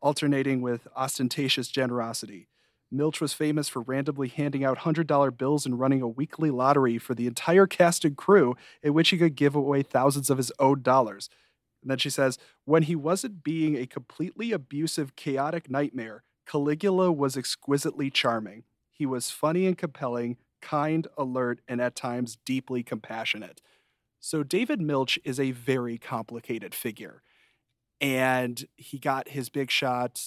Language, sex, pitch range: English, male, 125-150 Hz